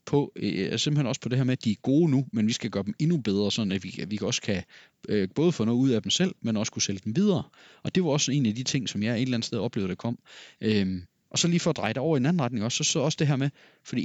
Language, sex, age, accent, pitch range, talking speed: Danish, male, 30-49, native, 110-145 Hz, 330 wpm